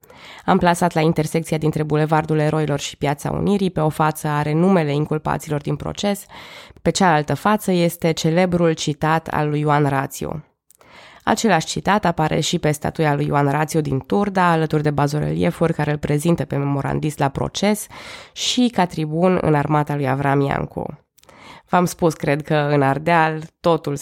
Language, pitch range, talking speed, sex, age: Romanian, 145-175 Hz, 155 wpm, female, 20-39